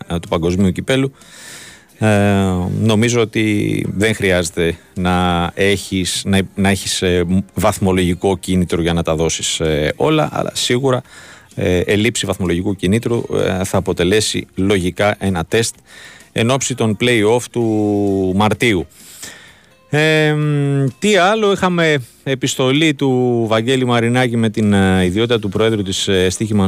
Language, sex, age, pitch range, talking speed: Greek, male, 30-49, 90-115 Hz, 105 wpm